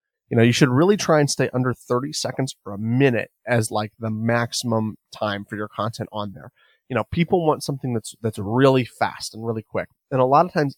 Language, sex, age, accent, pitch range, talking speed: English, male, 30-49, American, 115-145 Hz, 230 wpm